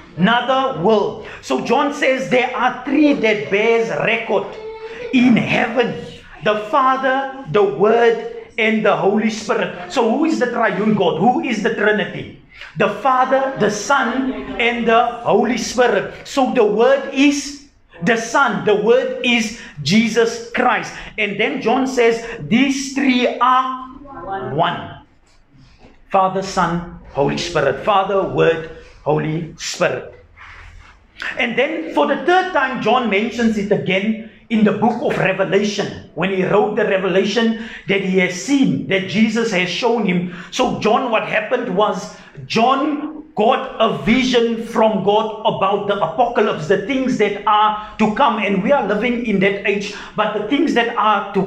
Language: English